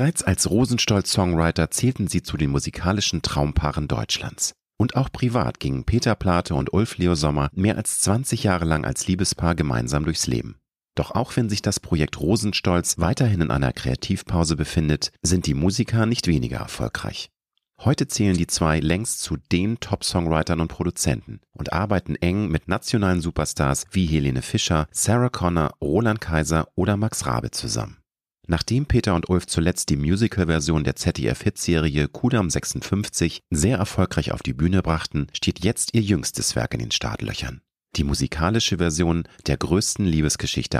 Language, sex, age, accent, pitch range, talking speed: German, male, 40-59, German, 80-105 Hz, 155 wpm